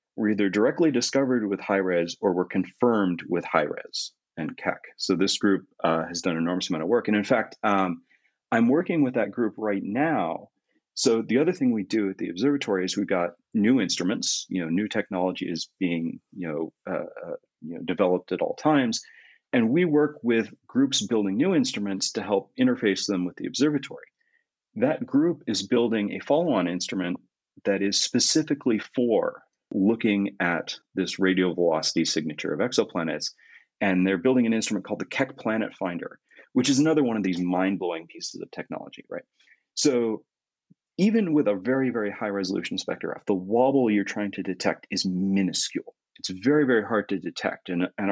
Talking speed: 180 wpm